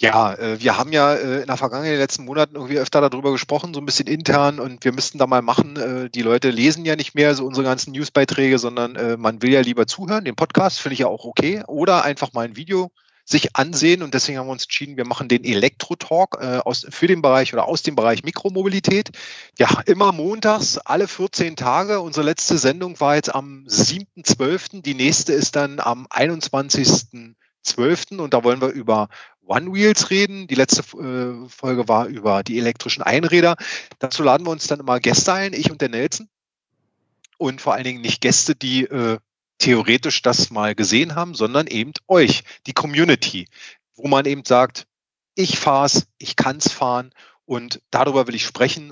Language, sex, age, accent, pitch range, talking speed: German, male, 30-49, German, 125-155 Hz, 195 wpm